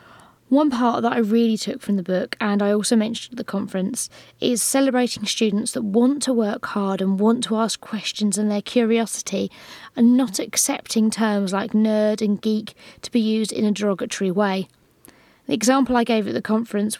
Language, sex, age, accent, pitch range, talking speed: English, female, 20-39, British, 205-235 Hz, 190 wpm